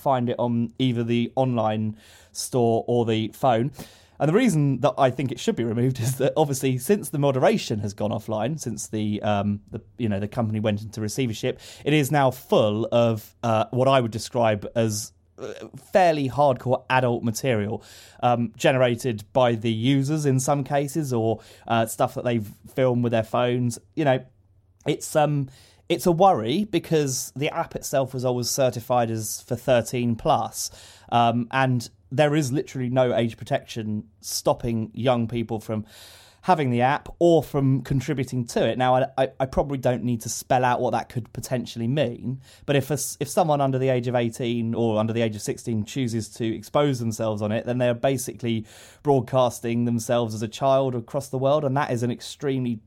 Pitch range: 115-135 Hz